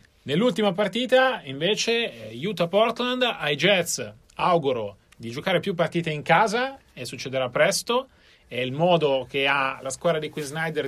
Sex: male